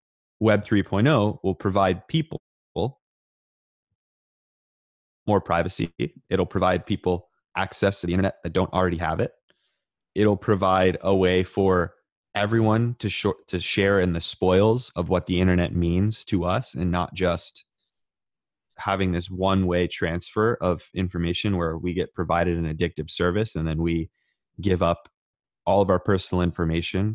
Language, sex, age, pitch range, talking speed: English, male, 20-39, 85-105 Hz, 145 wpm